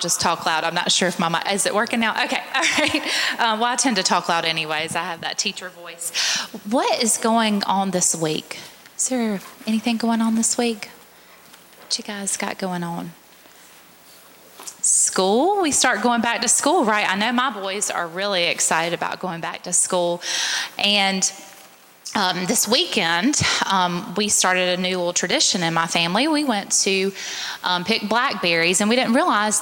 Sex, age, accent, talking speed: female, 20-39, American, 185 wpm